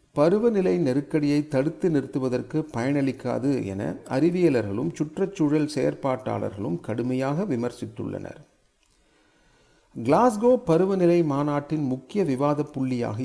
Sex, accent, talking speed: male, native, 75 wpm